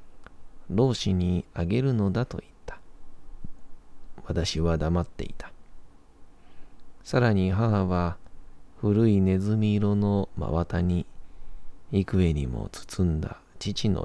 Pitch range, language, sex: 80-100 Hz, Japanese, male